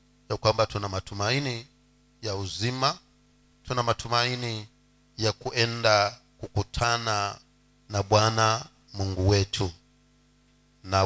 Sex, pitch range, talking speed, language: male, 100-125 Hz, 80 wpm, Swahili